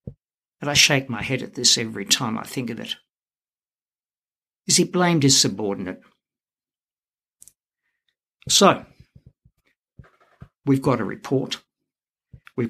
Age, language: 60-79, English